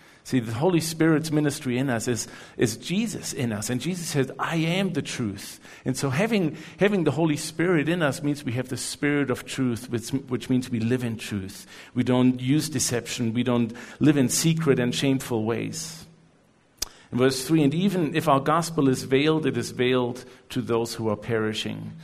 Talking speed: 195 wpm